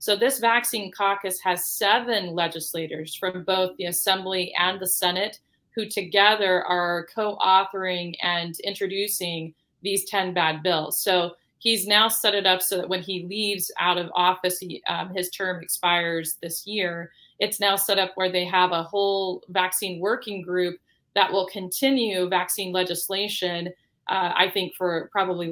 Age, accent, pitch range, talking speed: 30-49, American, 180-210 Hz, 155 wpm